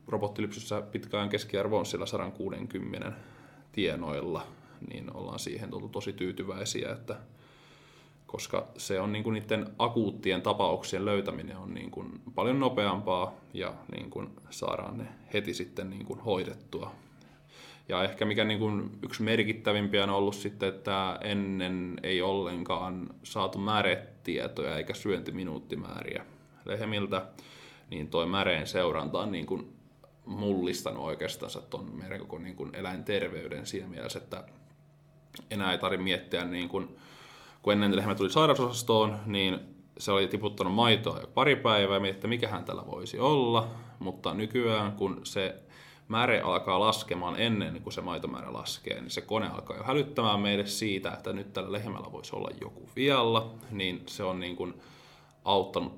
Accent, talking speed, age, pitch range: native, 135 wpm, 20-39, 95-110 Hz